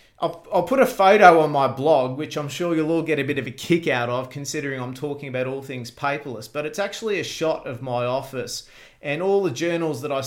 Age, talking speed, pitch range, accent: 30-49, 240 wpm, 130-160 Hz, Australian